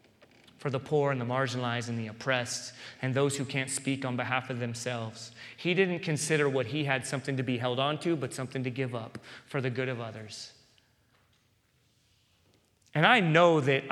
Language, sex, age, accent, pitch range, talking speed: English, male, 30-49, American, 120-140 Hz, 190 wpm